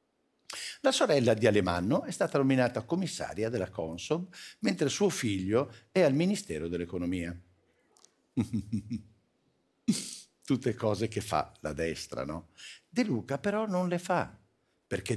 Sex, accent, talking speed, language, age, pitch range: male, native, 125 wpm, Italian, 60-79, 95-140 Hz